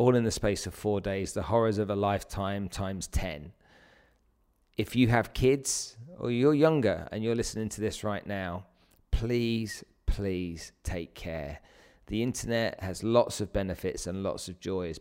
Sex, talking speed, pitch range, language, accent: male, 170 wpm, 100-130 Hz, English, British